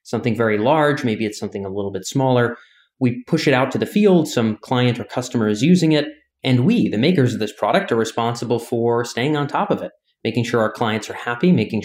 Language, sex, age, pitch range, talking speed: English, male, 30-49, 110-130 Hz, 235 wpm